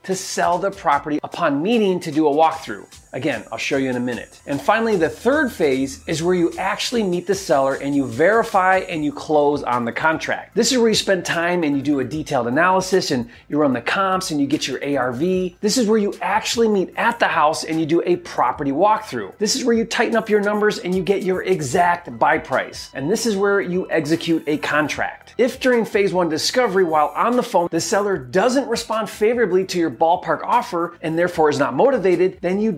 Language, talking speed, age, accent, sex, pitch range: English, 225 wpm, 30-49, American, male, 150-210 Hz